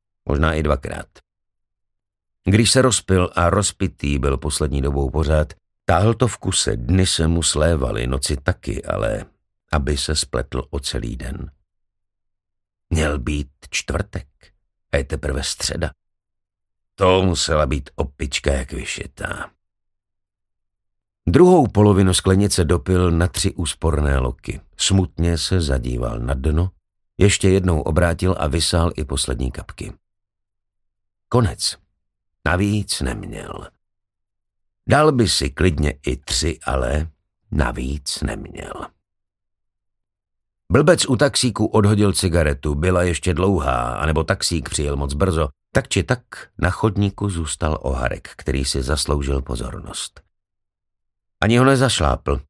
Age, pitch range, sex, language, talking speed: 50-69, 75-100 Hz, male, Slovak, 115 wpm